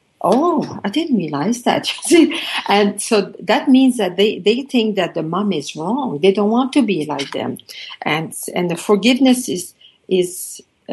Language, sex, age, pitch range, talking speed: English, female, 50-69, 195-255 Hz, 170 wpm